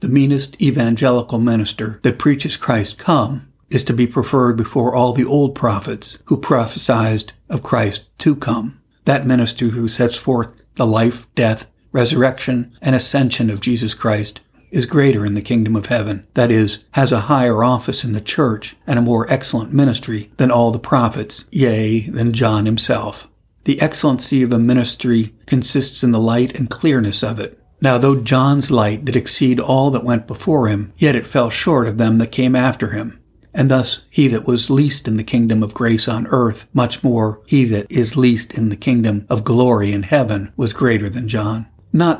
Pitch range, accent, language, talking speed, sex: 110-130 Hz, American, English, 185 wpm, male